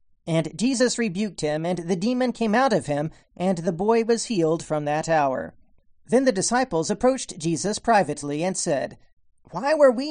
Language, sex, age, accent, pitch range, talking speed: English, male, 40-59, American, 155-220 Hz, 180 wpm